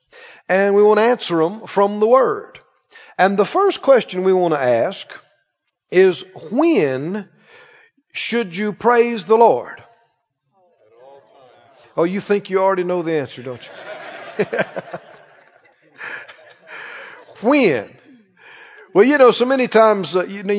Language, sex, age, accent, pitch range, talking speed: English, male, 50-69, American, 180-240 Hz, 130 wpm